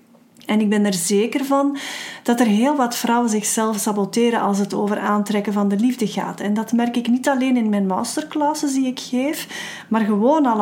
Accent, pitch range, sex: Dutch, 210-270 Hz, female